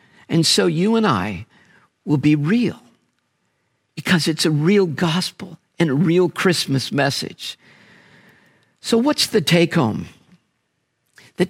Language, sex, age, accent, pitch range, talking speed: English, male, 50-69, American, 145-195 Hz, 125 wpm